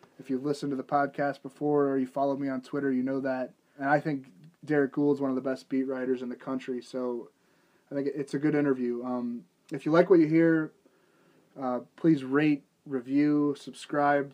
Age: 20-39